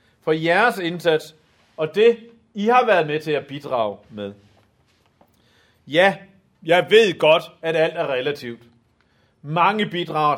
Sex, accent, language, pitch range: male, native, Danish, 155-210 Hz